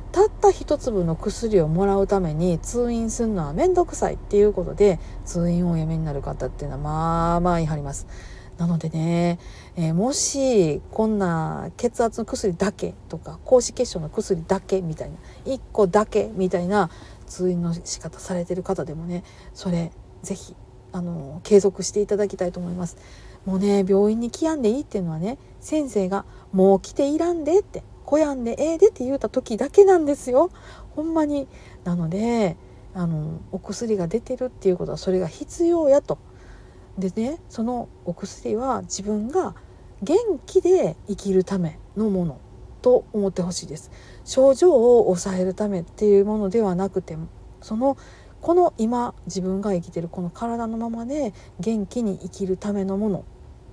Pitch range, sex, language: 170-235 Hz, female, Japanese